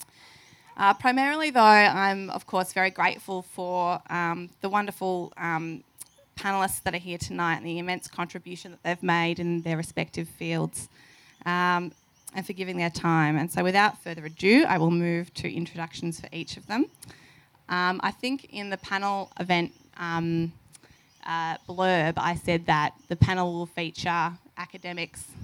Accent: Australian